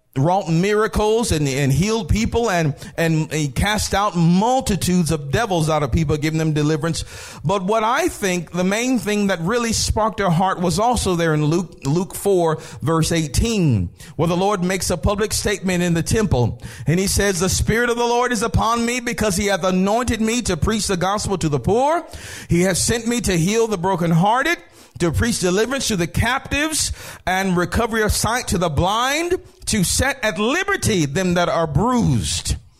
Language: English